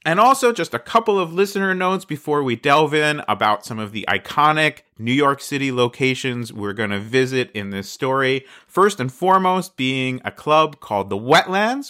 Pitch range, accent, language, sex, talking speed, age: 125-175 Hz, American, English, male, 185 wpm, 30-49